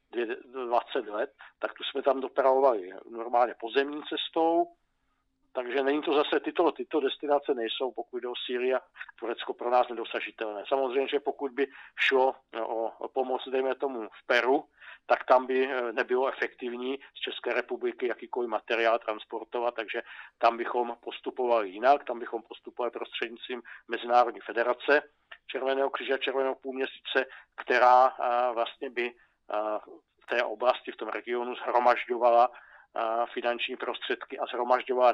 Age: 50-69